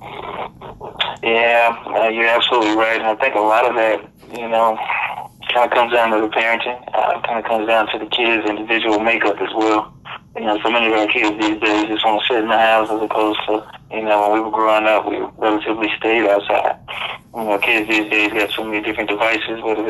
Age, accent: 20-39, American